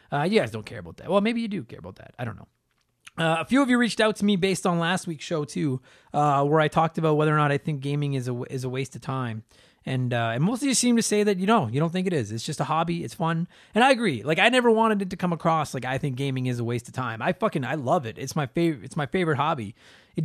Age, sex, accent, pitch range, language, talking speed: 20-39, male, American, 125-180 Hz, English, 310 wpm